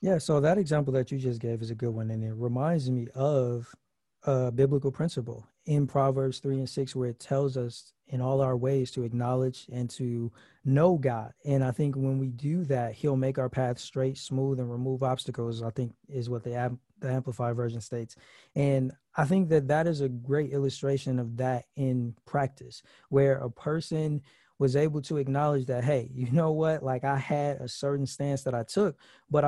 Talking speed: 200 wpm